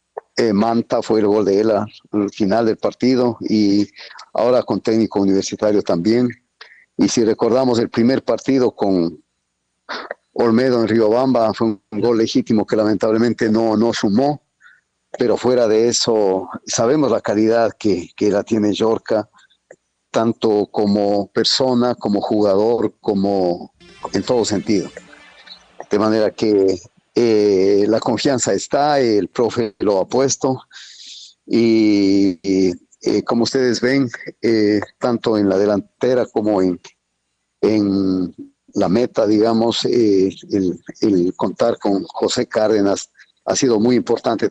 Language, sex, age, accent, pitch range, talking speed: Spanish, male, 50-69, Mexican, 100-120 Hz, 130 wpm